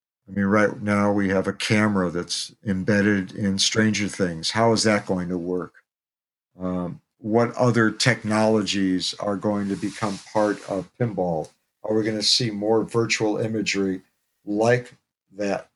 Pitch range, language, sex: 95-105 Hz, English, male